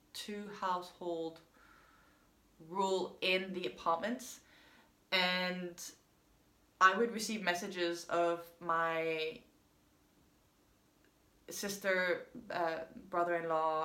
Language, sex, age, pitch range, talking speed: English, female, 20-39, 170-235 Hz, 70 wpm